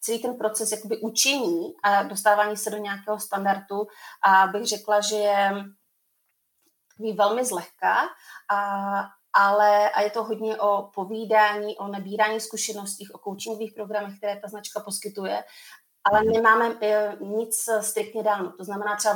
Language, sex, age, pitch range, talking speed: Slovak, female, 30-49, 200-220 Hz, 135 wpm